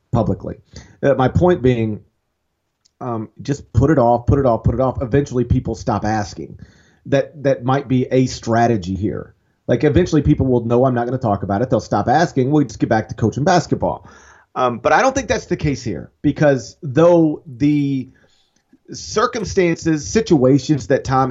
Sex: male